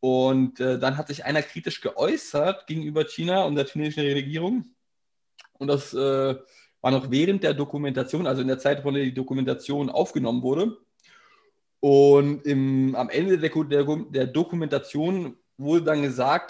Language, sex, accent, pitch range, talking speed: German, male, German, 135-160 Hz, 145 wpm